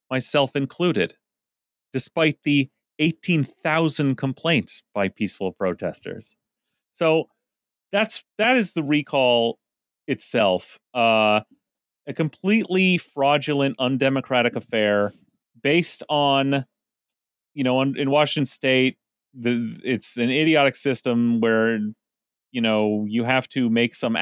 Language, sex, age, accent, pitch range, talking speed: English, male, 30-49, American, 110-140 Hz, 105 wpm